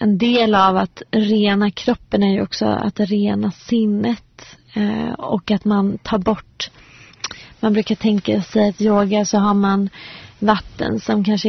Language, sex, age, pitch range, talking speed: English, female, 30-49, 195-220 Hz, 160 wpm